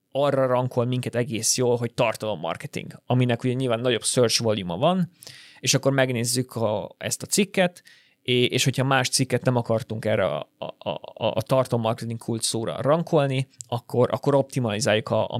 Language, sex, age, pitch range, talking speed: Hungarian, male, 30-49, 115-135 Hz, 165 wpm